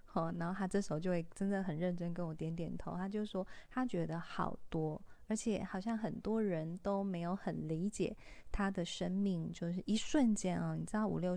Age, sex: 20-39, female